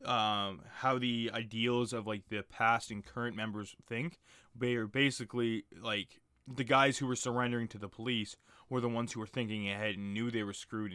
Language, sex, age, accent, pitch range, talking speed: English, male, 20-39, American, 110-130 Hz, 195 wpm